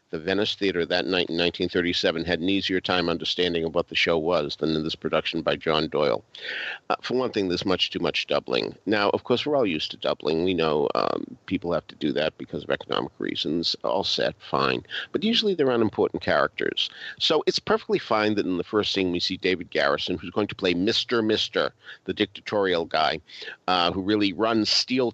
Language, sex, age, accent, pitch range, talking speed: English, male, 50-69, American, 90-135 Hz, 210 wpm